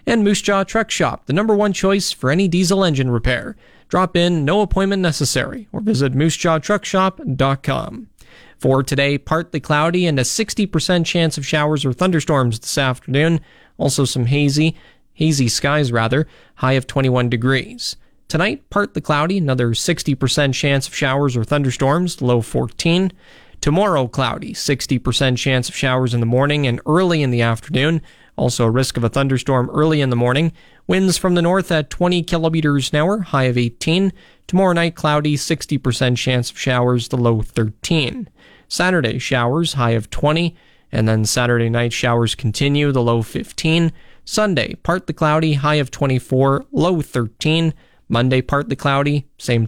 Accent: American